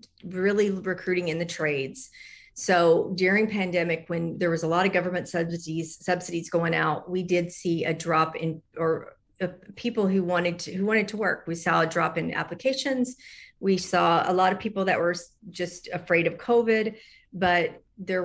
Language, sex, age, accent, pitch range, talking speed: English, female, 40-59, American, 165-190 Hz, 180 wpm